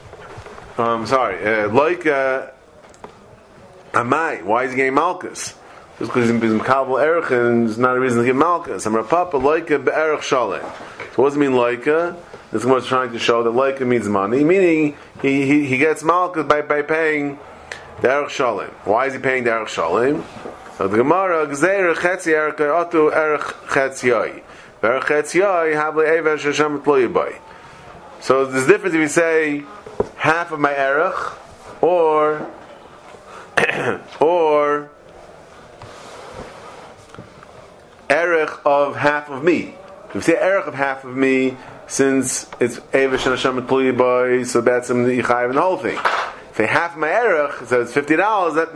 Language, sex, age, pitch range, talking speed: English, male, 30-49, 130-155 Hz, 125 wpm